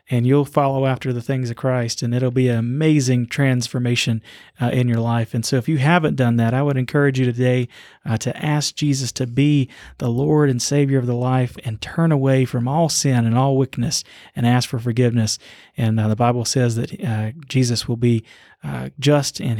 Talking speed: 210 wpm